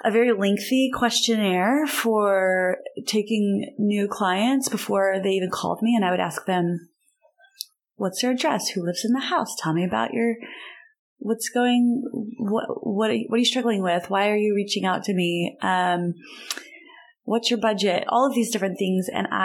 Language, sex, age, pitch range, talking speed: English, female, 30-49, 190-245 Hz, 180 wpm